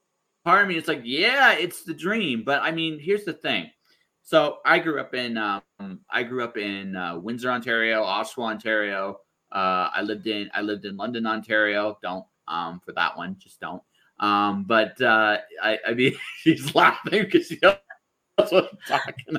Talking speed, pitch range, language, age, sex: 190 wpm, 110-155 Hz, English, 30-49, male